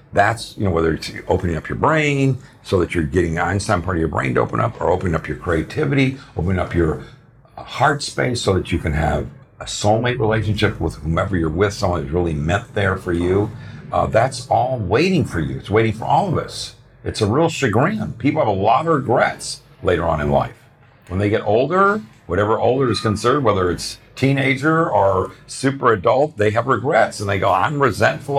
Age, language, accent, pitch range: 60-79, English, American, 85-120 Hz